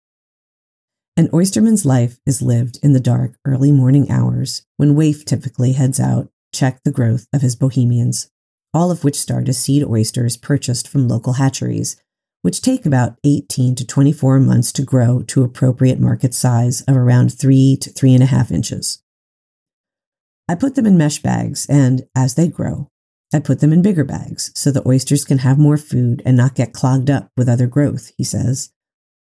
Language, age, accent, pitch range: English, 40-59, American, 125-145 Hz